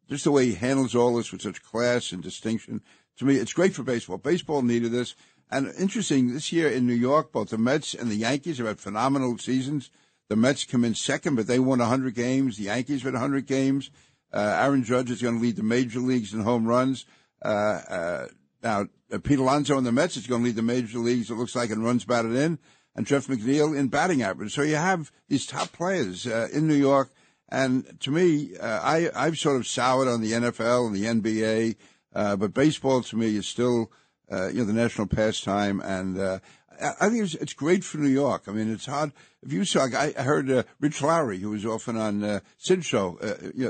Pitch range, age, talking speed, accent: 115-140 Hz, 60-79, 225 wpm, American